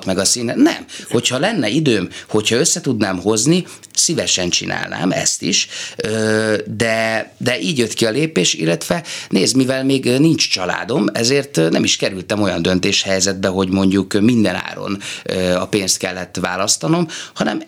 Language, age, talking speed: Hungarian, 30-49, 140 wpm